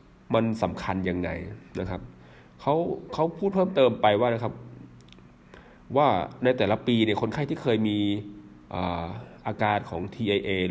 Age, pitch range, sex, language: 20-39, 90-115 Hz, male, Thai